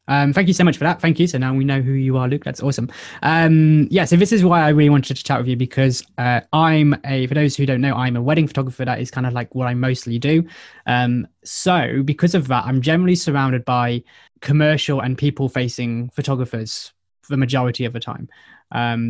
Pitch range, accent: 125-145 Hz, British